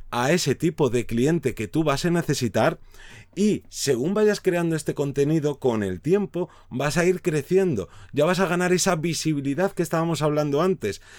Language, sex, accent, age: Spanish, male, Spanish, 30-49